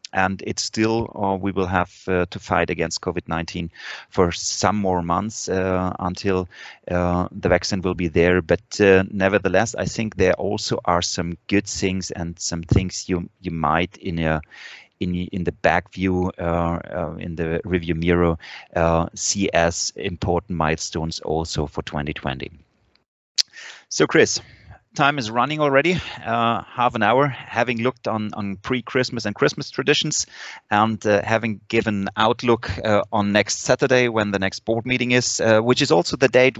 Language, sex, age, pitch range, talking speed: English, male, 30-49, 85-110 Hz, 165 wpm